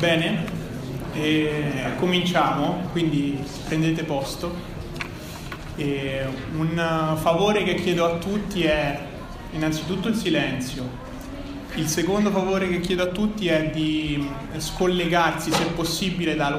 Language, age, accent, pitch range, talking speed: Italian, 30-49, native, 145-170 Hz, 110 wpm